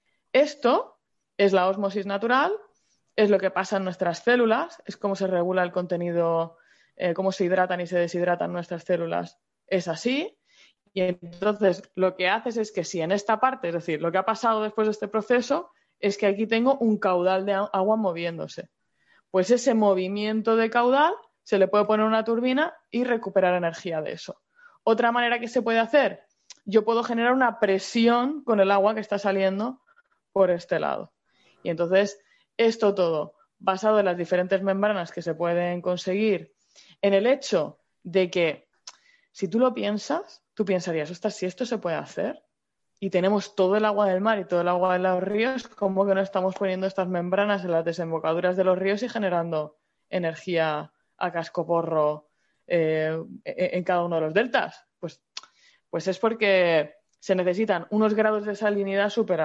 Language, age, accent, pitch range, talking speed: Spanish, 20-39, Spanish, 180-225 Hz, 175 wpm